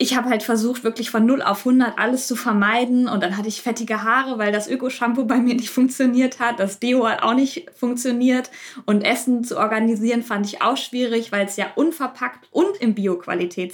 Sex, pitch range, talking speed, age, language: female, 200-235 Hz, 205 wpm, 20-39, German